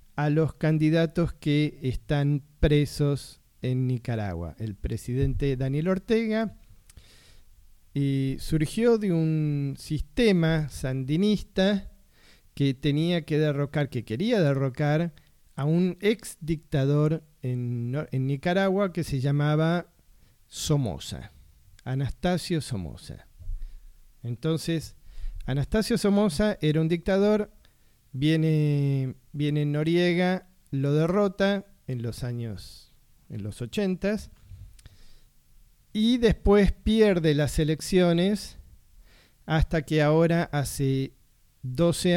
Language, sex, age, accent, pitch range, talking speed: Spanish, male, 40-59, Argentinian, 125-175 Hz, 90 wpm